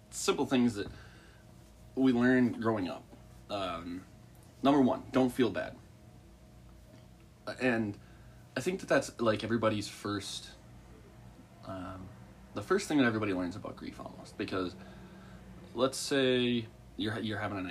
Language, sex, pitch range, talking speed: English, male, 90-125 Hz, 130 wpm